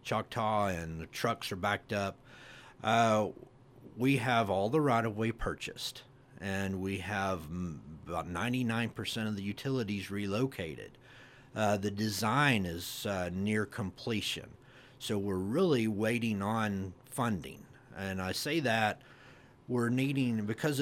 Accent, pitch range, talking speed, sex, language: American, 100-125 Hz, 130 wpm, male, English